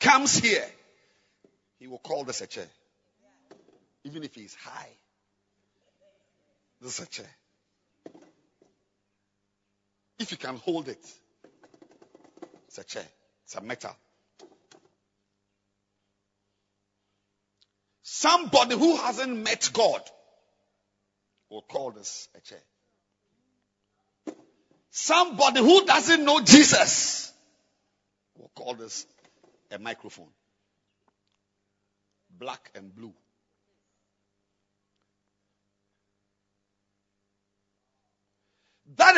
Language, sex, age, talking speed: English, male, 50-69, 80 wpm